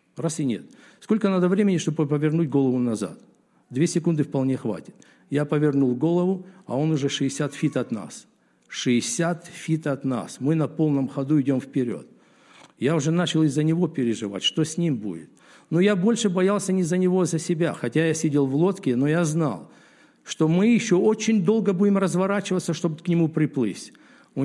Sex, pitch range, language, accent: male, 140-185 Hz, Russian, native